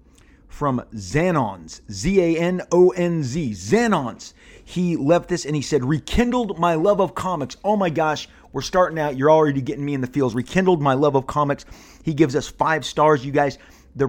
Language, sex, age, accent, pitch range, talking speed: English, male, 30-49, American, 120-150 Hz, 175 wpm